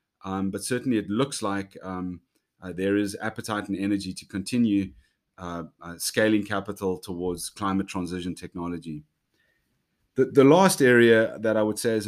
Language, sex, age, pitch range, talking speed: English, male, 30-49, 95-110 Hz, 160 wpm